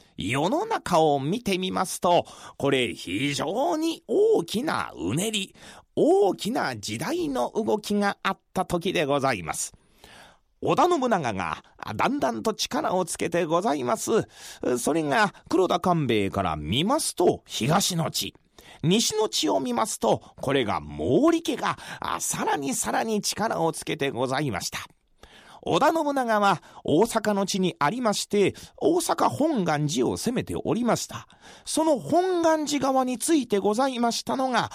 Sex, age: male, 40-59